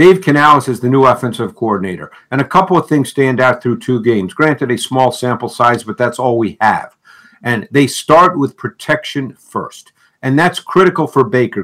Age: 50-69